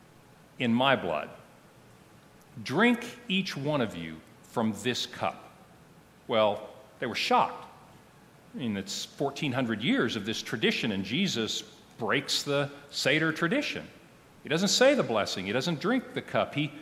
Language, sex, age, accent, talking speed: English, male, 50-69, American, 145 wpm